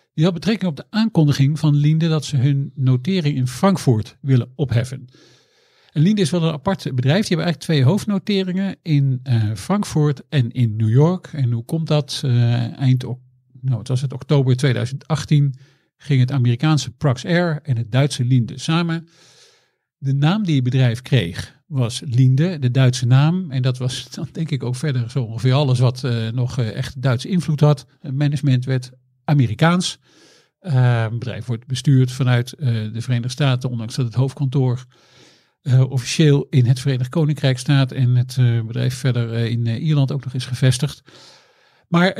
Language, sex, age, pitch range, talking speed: Dutch, male, 50-69, 125-155 Hz, 170 wpm